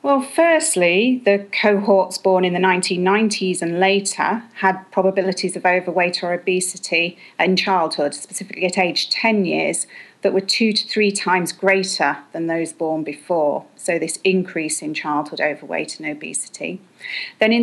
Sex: female